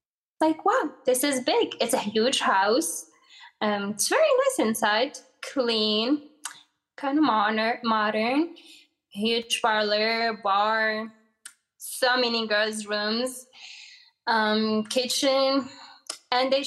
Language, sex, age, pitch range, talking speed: English, female, 10-29, 220-290 Hz, 110 wpm